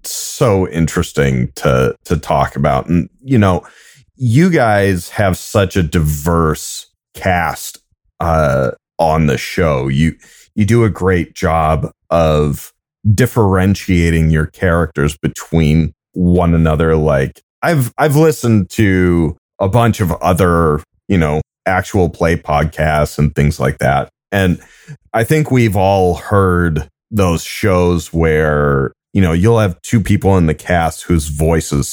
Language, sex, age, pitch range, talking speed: English, male, 30-49, 75-95 Hz, 135 wpm